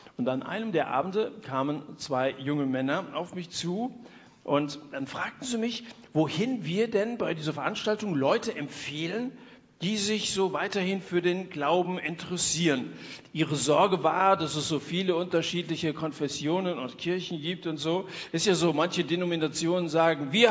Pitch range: 150-195 Hz